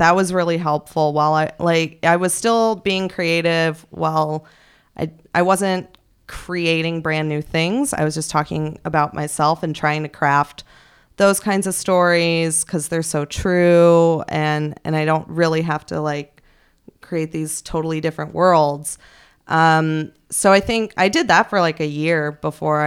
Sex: female